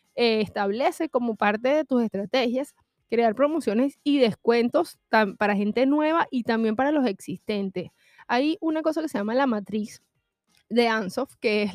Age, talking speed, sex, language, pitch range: 20-39, 155 wpm, female, Spanish, 210-265 Hz